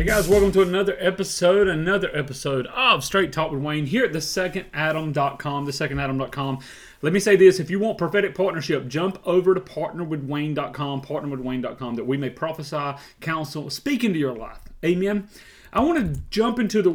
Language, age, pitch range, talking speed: English, 30-49, 140-195 Hz, 165 wpm